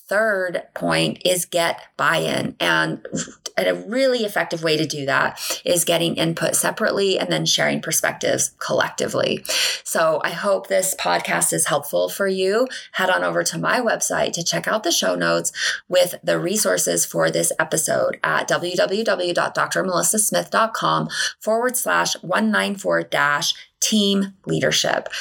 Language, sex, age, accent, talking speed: English, female, 20-39, American, 135 wpm